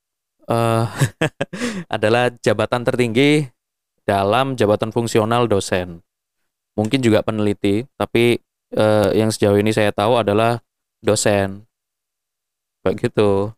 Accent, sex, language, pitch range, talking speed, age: native, male, Indonesian, 110-135 Hz, 90 wpm, 20-39